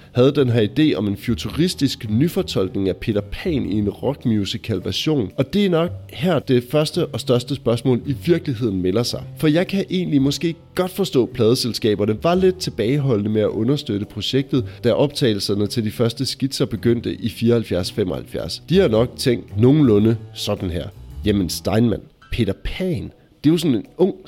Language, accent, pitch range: Danish, native, 105-140 Hz